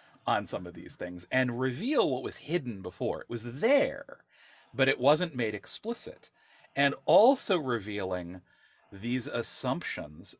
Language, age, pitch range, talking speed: English, 40-59, 105-150 Hz, 140 wpm